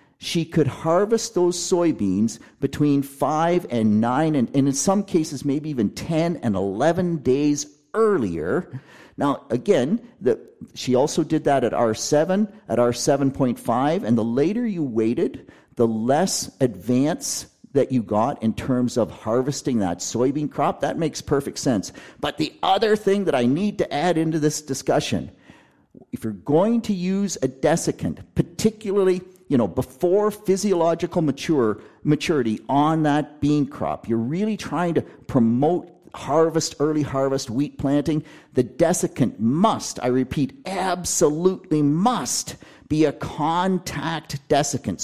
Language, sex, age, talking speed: English, male, 50-69, 140 wpm